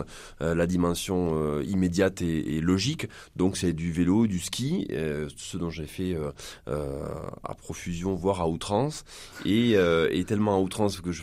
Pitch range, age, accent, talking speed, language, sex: 85-110 Hz, 20-39, French, 180 wpm, French, male